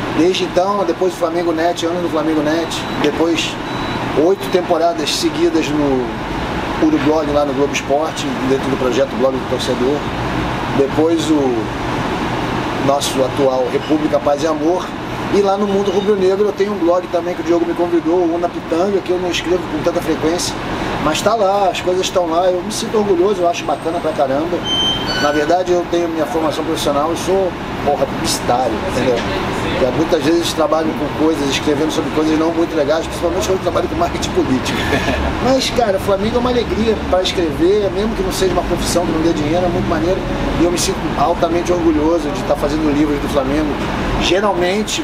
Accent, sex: Brazilian, male